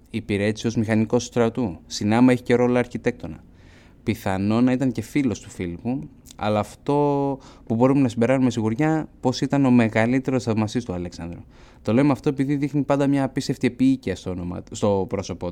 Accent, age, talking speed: native, 20-39, 165 wpm